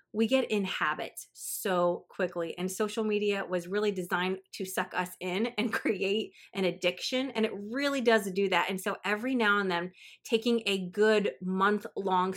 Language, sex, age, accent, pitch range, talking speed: English, female, 30-49, American, 185-220 Hz, 180 wpm